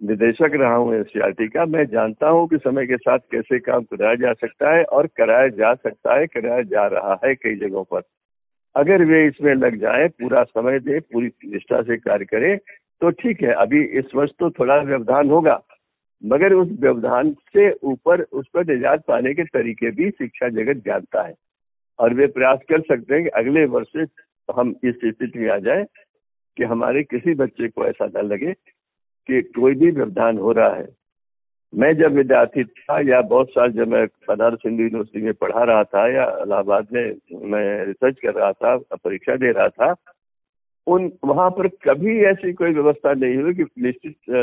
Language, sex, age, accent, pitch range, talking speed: Hindi, male, 60-79, native, 120-180 Hz, 185 wpm